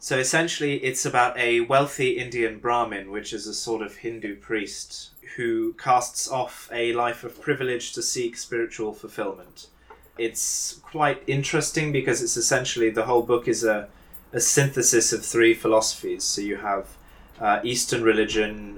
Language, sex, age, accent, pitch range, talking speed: English, male, 20-39, British, 110-145 Hz, 155 wpm